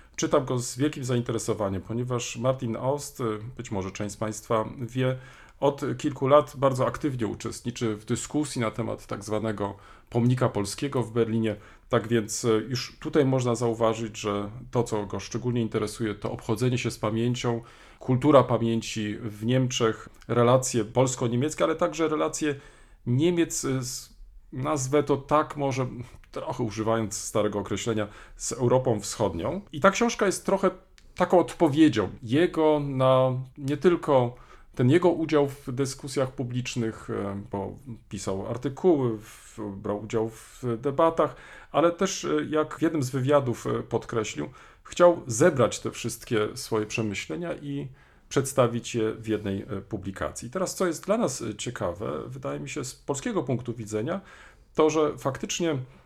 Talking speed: 140 wpm